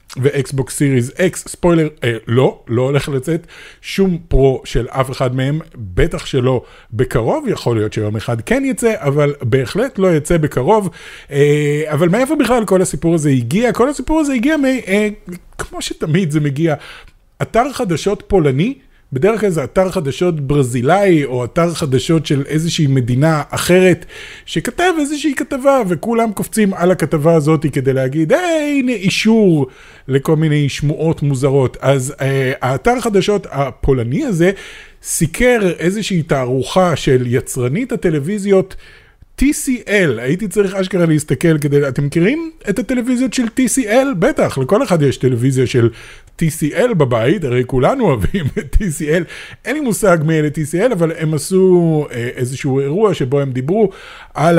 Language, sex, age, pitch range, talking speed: Hebrew, male, 30-49, 135-200 Hz, 145 wpm